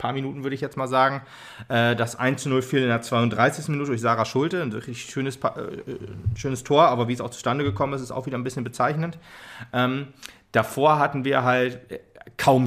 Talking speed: 205 wpm